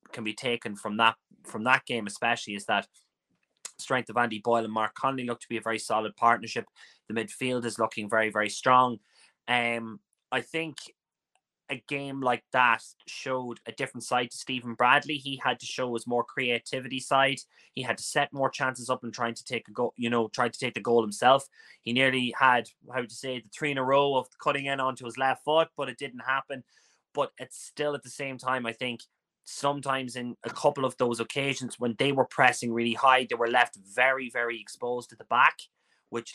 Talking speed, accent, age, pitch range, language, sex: 215 wpm, Irish, 20-39, 115-130 Hz, English, male